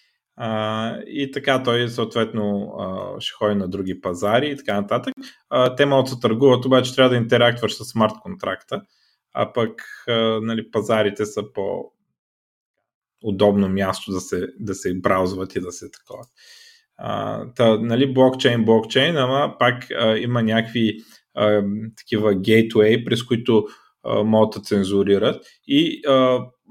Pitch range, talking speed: 110-135 Hz, 140 wpm